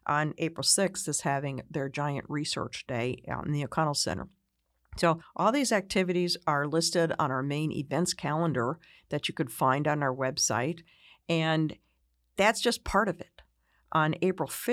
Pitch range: 140-170 Hz